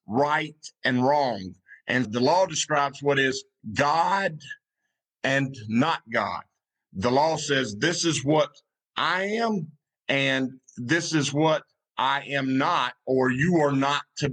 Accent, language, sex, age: American, English, male, 50-69